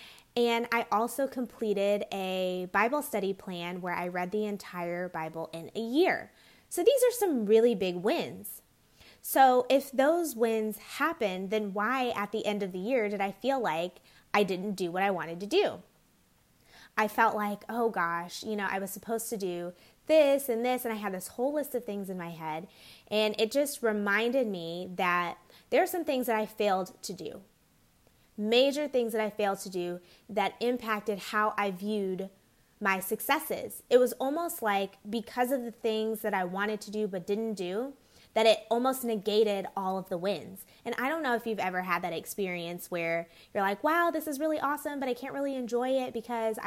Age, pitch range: 20-39, 190-245 Hz